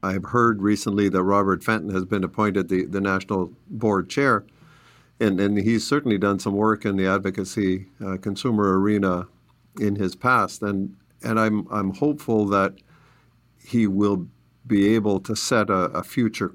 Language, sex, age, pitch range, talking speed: English, male, 50-69, 95-105 Hz, 165 wpm